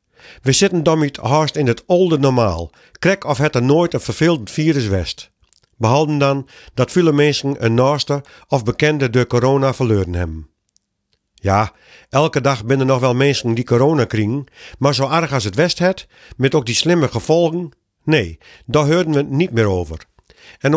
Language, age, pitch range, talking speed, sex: Dutch, 50-69, 120-155 Hz, 175 wpm, male